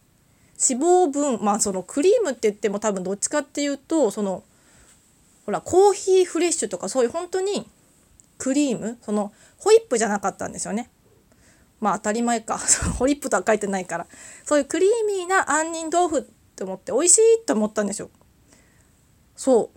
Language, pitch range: Japanese, 210-295 Hz